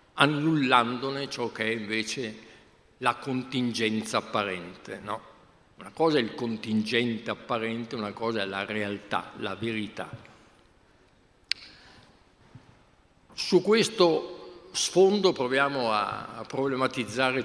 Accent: native